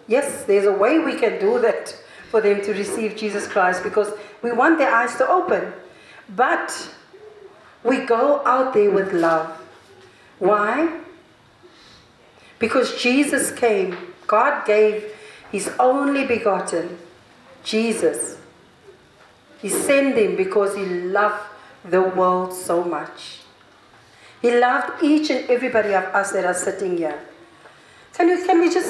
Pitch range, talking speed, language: 185-265 Hz, 135 wpm, English